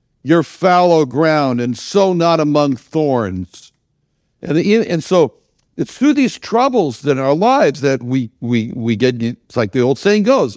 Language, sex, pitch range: English, male, 130-185 Hz